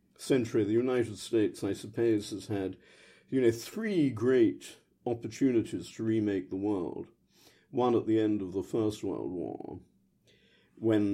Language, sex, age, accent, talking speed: English, male, 50-69, British, 145 wpm